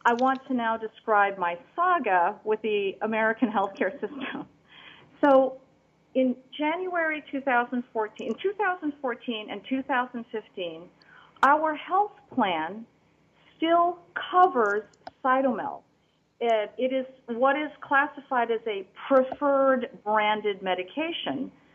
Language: English